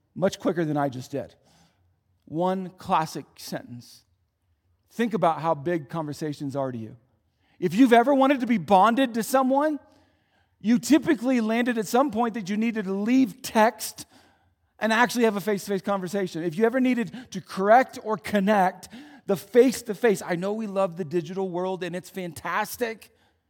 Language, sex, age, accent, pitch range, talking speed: English, male, 40-59, American, 140-220 Hz, 165 wpm